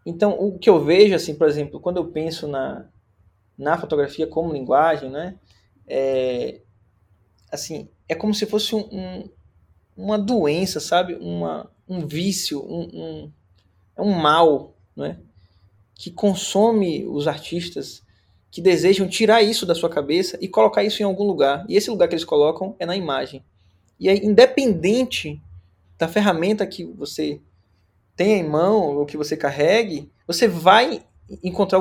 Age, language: 20-39, Portuguese